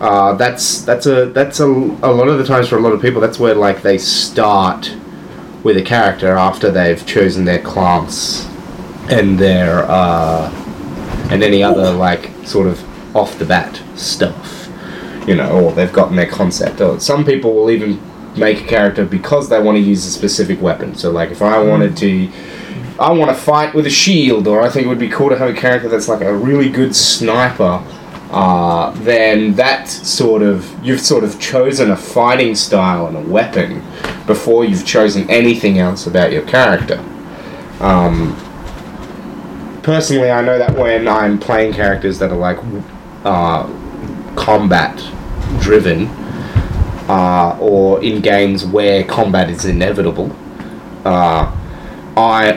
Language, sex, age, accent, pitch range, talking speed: English, male, 30-49, Australian, 95-120 Hz, 160 wpm